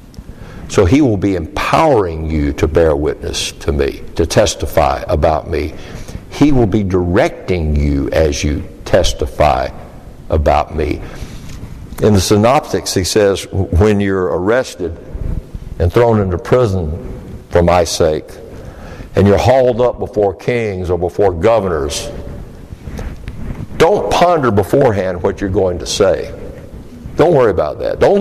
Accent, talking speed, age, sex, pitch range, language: American, 130 wpm, 60-79, male, 90-125 Hz, English